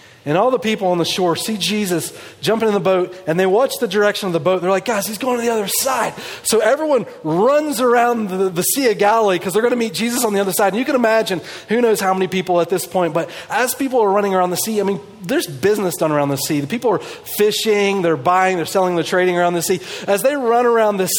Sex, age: male, 30-49